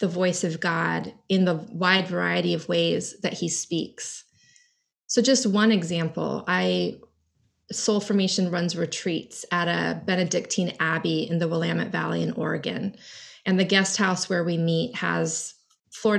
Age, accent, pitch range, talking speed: 20-39, American, 165-195 Hz, 150 wpm